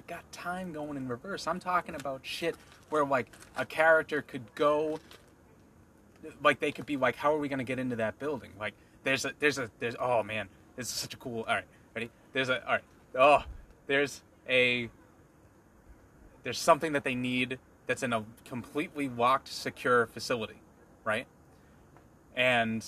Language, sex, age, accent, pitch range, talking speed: English, male, 20-39, American, 110-140 Hz, 175 wpm